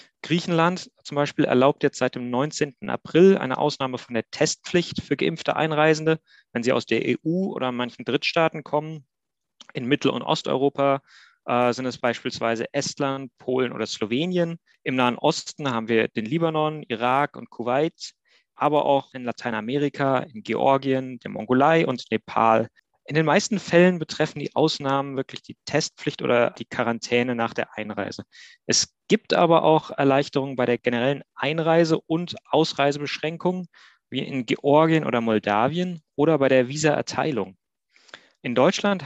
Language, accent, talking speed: German, German, 145 wpm